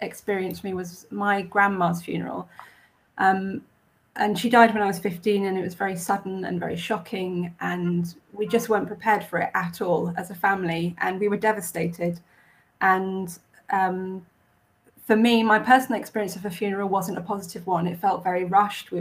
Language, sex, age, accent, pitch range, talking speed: English, female, 30-49, British, 175-210 Hz, 180 wpm